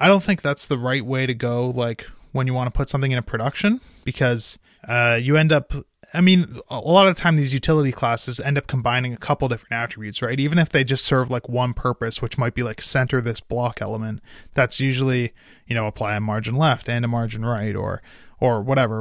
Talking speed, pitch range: 225 wpm, 120-150 Hz